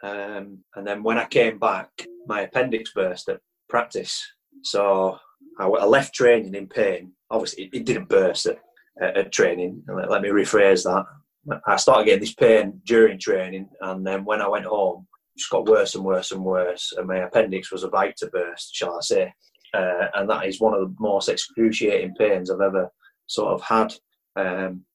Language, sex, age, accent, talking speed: English, male, 20-39, British, 190 wpm